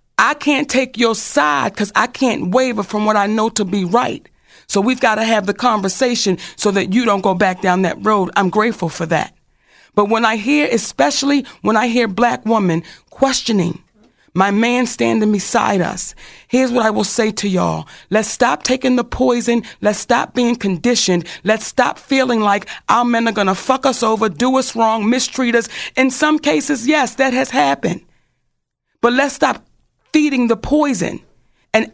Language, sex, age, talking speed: English, female, 40-59, 185 wpm